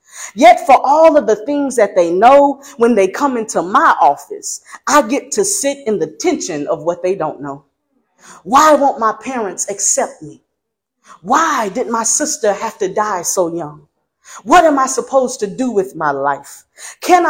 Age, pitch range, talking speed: 40-59, 200-295 Hz, 180 wpm